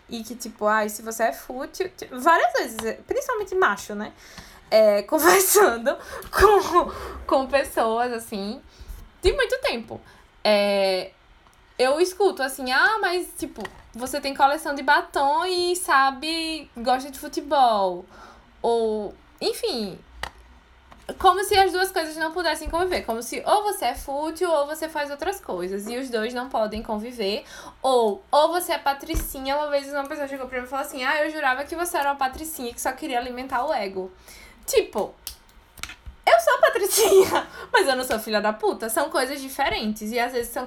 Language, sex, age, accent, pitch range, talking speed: Portuguese, female, 10-29, Brazilian, 230-335 Hz, 165 wpm